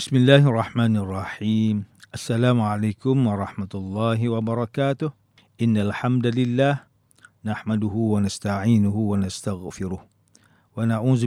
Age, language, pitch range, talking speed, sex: 50-69, English, 105-125 Hz, 85 wpm, male